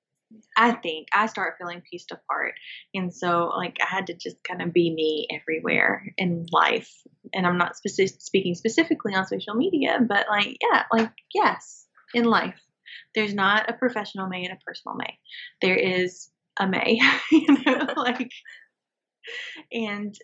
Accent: American